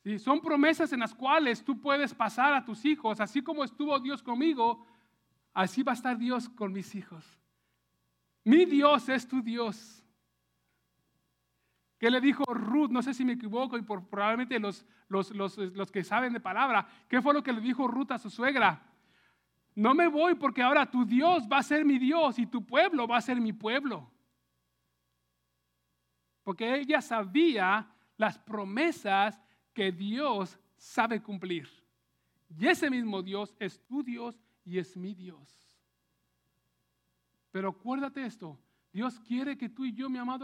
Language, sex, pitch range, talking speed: English, male, 190-260 Hz, 160 wpm